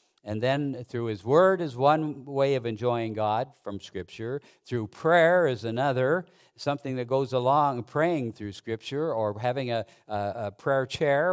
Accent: American